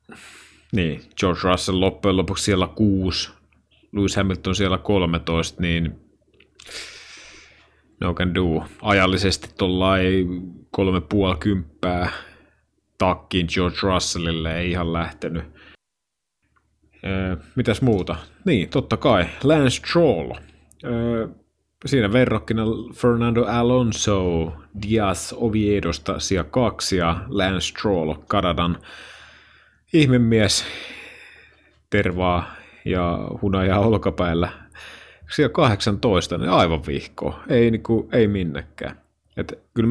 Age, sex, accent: 30-49, male, native